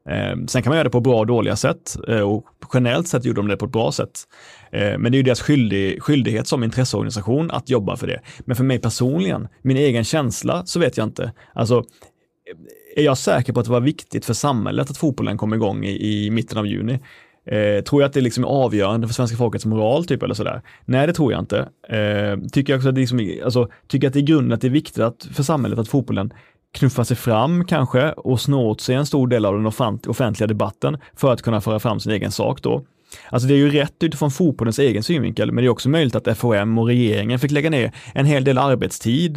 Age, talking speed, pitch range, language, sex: 30-49, 230 wpm, 110-140 Hz, Swedish, male